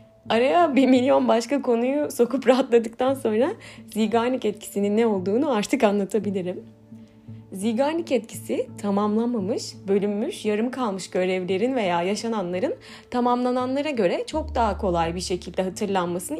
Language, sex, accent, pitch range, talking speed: Turkish, female, native, 190-260 Hz, 115 wpm